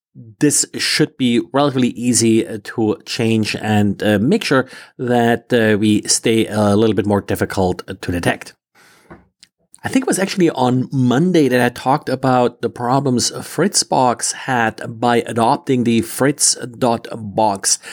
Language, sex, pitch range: English, male, 120-150 Hz